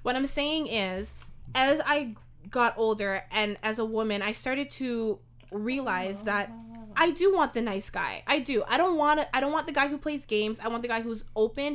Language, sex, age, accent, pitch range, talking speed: English, female, 20-39, American, 215-265 Hz, 215 wpm